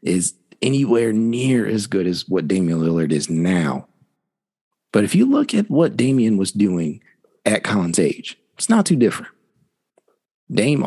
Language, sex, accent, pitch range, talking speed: English, male, American, 90-110 Hz, 155 wpm